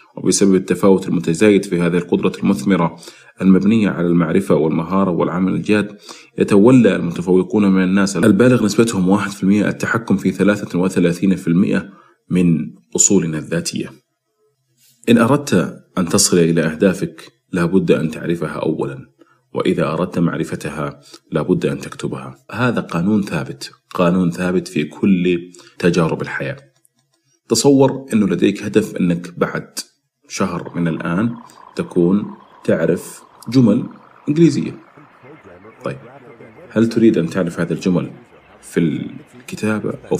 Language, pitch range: Arabic, 85-105 Hz